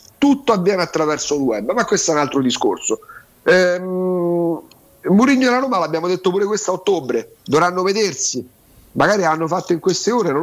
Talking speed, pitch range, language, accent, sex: 175 wpm, 150-240 Hz, Italian, native, male